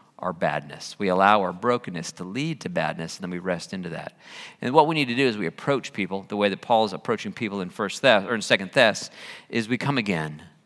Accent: American